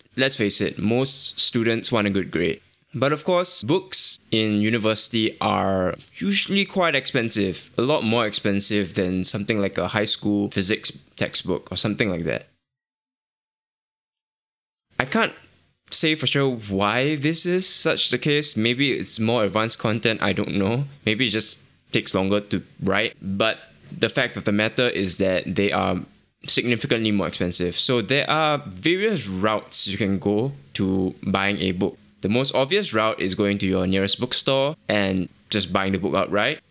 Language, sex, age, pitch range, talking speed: English, male, 10-29, 100-130 Hz, 165 wpm